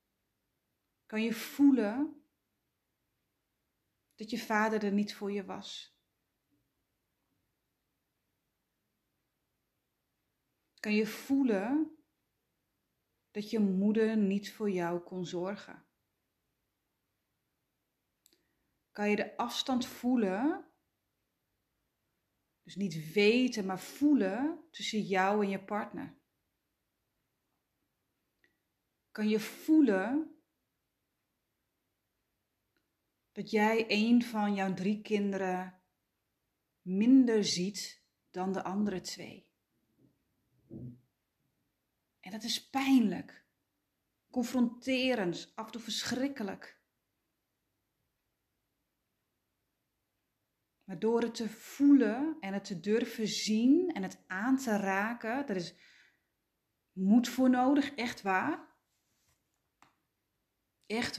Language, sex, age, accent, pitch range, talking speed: Dutch, female, 30-49, Dutch, 190-245 Hz, 85 wpm